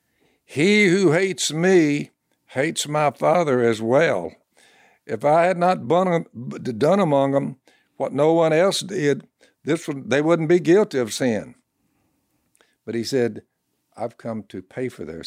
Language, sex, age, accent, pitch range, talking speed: English, male, 60-79, American, 115-140 Hz, 150 wpm